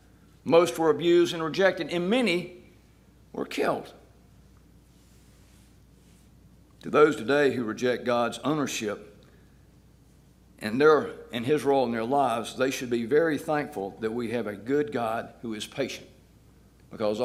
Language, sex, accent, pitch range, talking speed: English, male, American, 120-180 Hz, 135 wpm